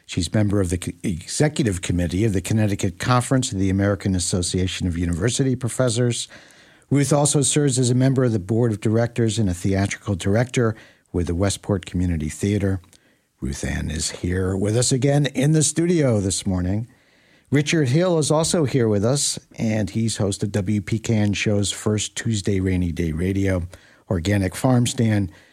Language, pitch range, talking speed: English, 95-120 Hz, 165 wpm